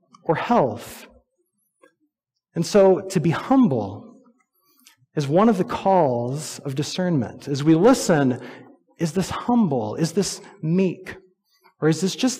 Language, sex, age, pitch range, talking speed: English, male, 30-49, 140-200 Hz, 130 wpm